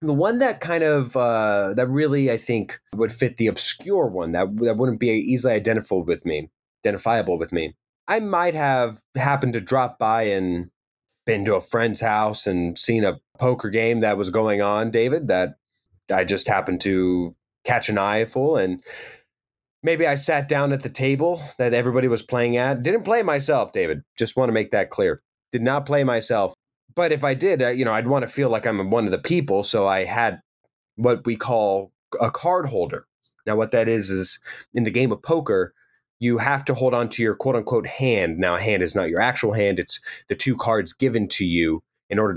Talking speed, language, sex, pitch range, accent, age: 205 wpm, English, male, 110-140 Hz, American, 20-39